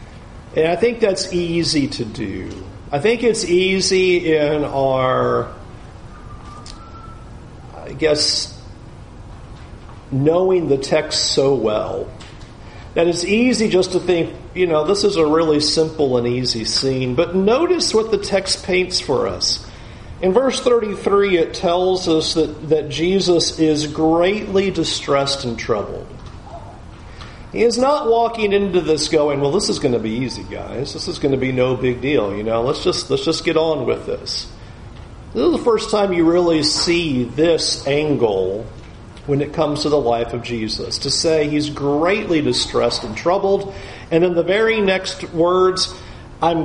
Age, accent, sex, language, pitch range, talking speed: 50-69, American, male, English, 120-180 Hz, 160 wpm